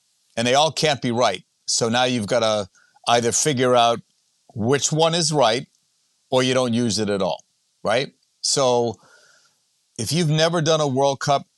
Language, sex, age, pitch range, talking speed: English, male, 50-69, 105-130 Hz, 175 wpm